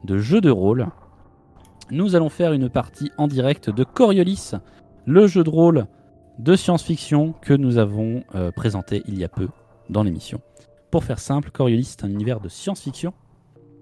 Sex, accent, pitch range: male, French, 100-145 Hz